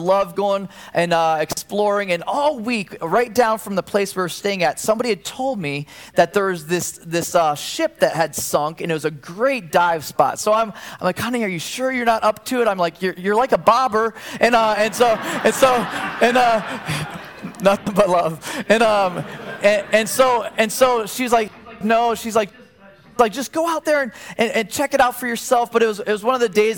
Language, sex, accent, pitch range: English, male, American, 185-230 Hz